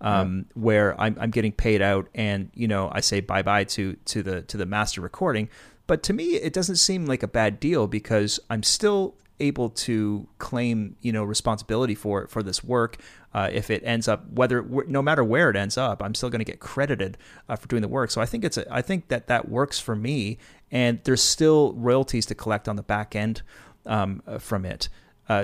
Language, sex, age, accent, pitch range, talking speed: English, male, 30-49, American, 105-135 Hz, 220 wpm